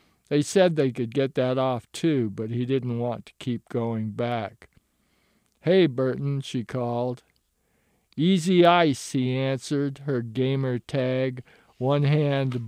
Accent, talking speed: American, 135 wpm